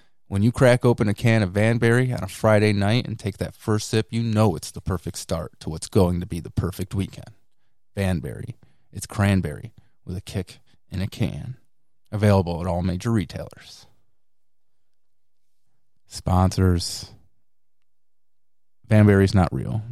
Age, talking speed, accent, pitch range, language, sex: 30-49, 150 wpm, American, 95-125 Hz, English, male